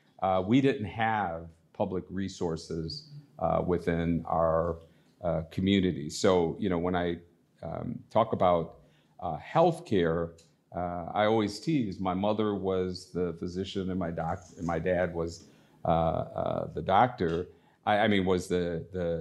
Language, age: English, 50-69